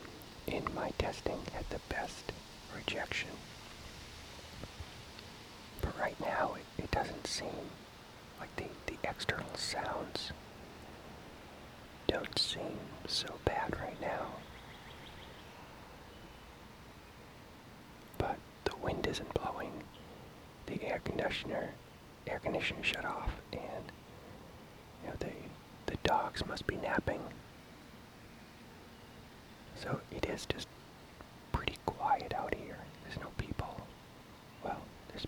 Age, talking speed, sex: 40-59, 100 wpm, male